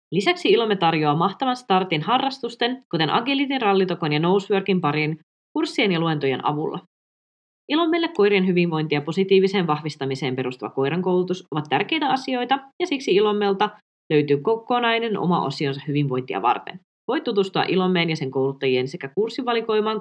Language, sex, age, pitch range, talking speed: Finnish, female, 20-39, 155-250 Hz, 130 wpm